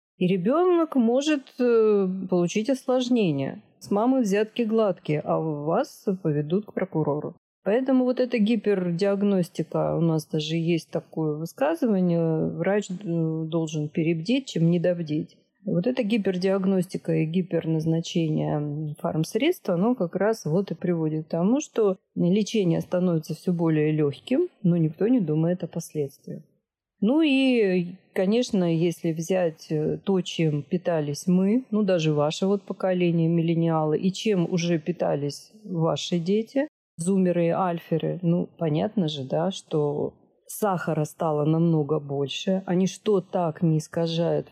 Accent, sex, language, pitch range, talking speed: native, female, Russian, 160-200 Hz, 125 wpm